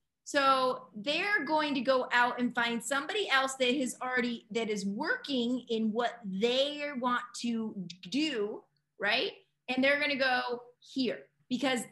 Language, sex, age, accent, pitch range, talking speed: English, female, 30-49, American, 215-275 Hz, 150 wpm